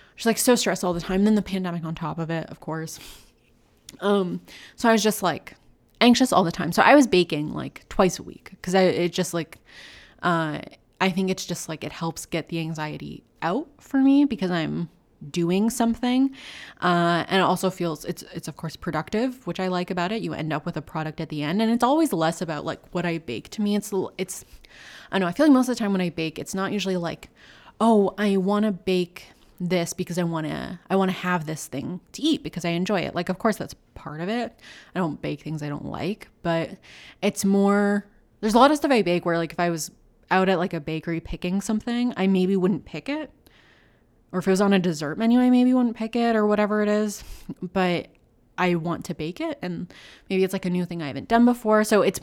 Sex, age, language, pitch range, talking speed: female, 20-39, English, 165-215 Hz, 240 wpm